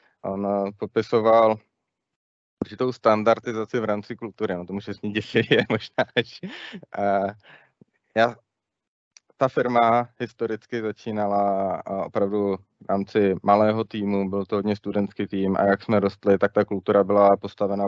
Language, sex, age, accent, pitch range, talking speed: Czech, male, 20-39, native, 100-115 Hz, 130 wpm